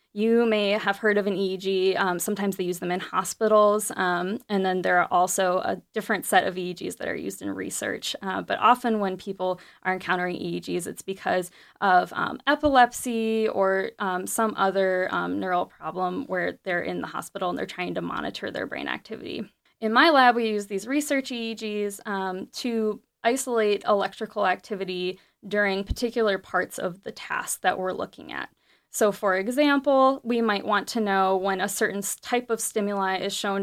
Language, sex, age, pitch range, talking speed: English, female, 10-29, 190-235 Hz, 180 wpm